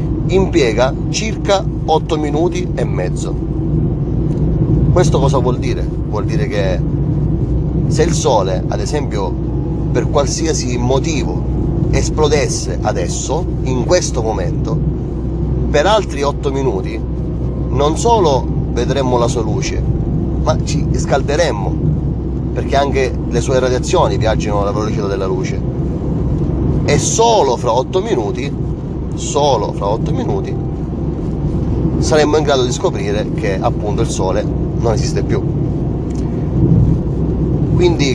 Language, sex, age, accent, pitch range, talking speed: Italian, male, 30-49, native, 135-160 Hz, 110 wpm